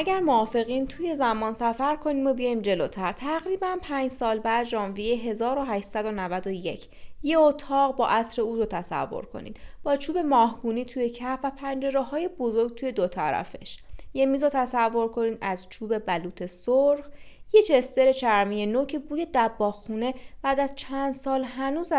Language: Persian